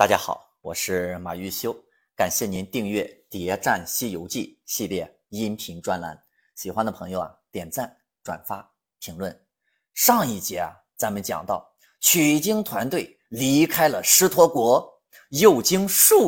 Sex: male